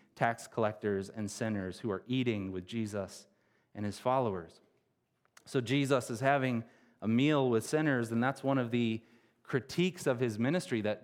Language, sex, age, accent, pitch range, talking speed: English, male, 30-49, American, 115-165 Hz, 165 wpm